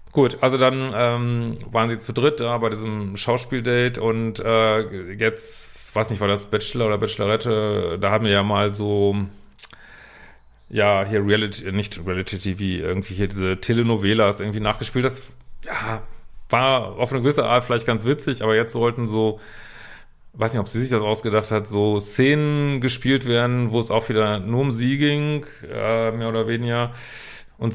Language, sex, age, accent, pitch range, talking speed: German, male, 40-59, German, 105-120 Hz, 170 wpm